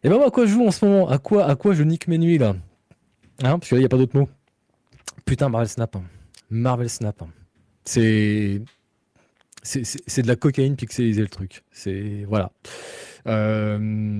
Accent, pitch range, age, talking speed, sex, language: French, 110-150 Hz, 20-39, 180 wpm, male, French